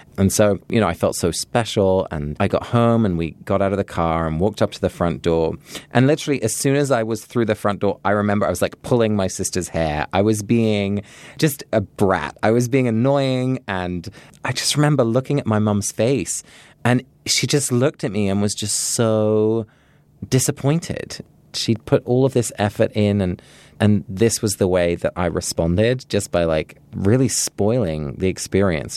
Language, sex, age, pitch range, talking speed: English, male, 20-39, 95-120 Hz, 205 wpm